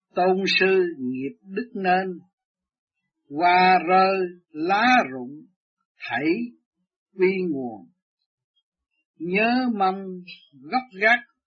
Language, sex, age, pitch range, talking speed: Vietnamese, male, 60-79, 170-245 Hz, 85 wpm